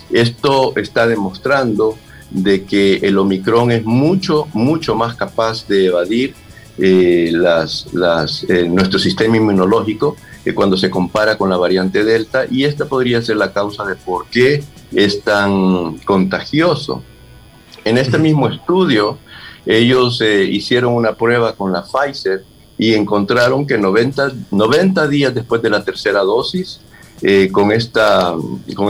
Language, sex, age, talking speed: Spanish, male, 50-69, 135 wpm